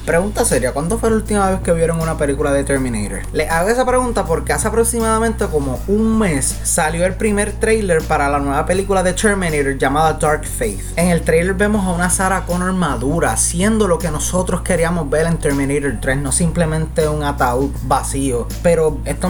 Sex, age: male, 20-39